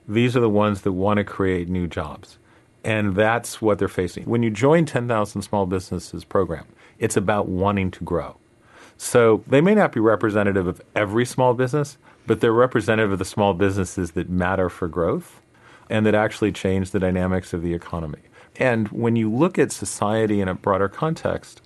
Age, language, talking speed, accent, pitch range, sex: 40-59, English, 185 wpm, American, 95-115 Hz, male